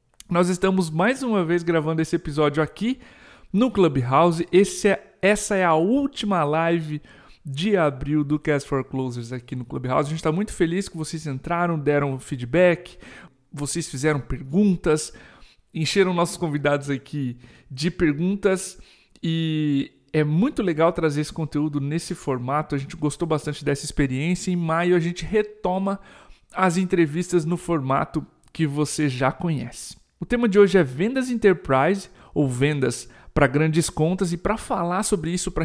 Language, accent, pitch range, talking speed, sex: Portuguese, Brazilian, 145-185 Hz, 155 wpm, male